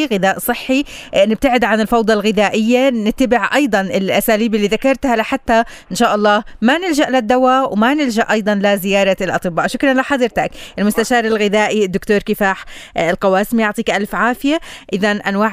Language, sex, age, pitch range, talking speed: Arabic, female, 20-39, 185-235 Hz, 140 wpm